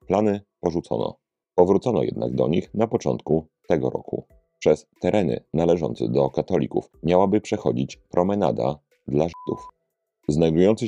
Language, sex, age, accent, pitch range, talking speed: Polish, male, 30-49, native, 75-105 Hz, 115 wpm